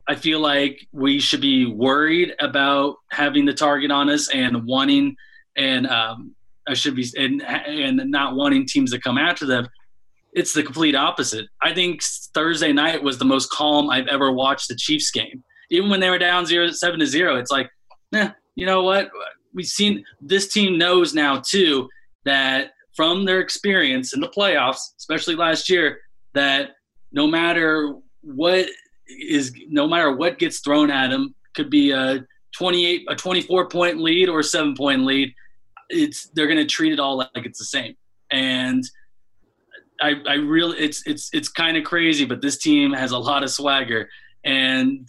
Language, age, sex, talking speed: English, 20-39, male, 180 wpm